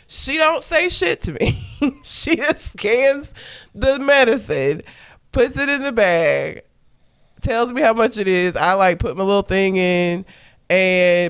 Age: 20-39